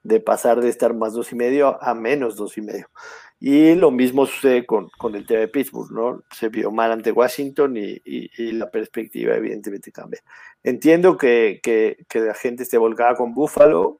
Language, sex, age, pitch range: Spanish, male, 50-69, 115-160 Hz